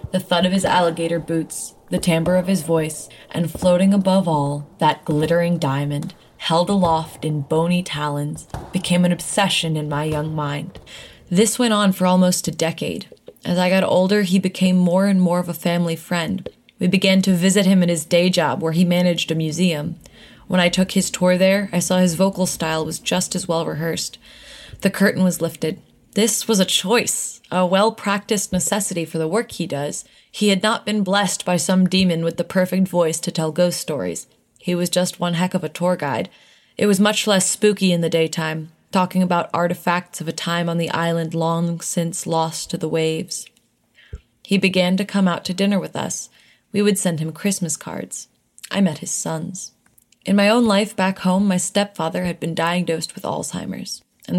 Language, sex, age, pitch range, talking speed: English, female, 20-39, 165-190 Hz, 195 wpm